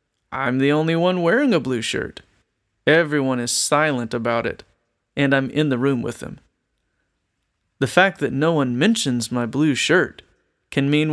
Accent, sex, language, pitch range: American, male, English, 125-165 Hz